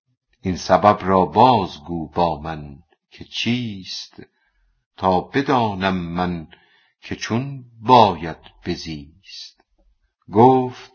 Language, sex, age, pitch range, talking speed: Persian, female, 60-79, 85-105 Hz, 90 wpm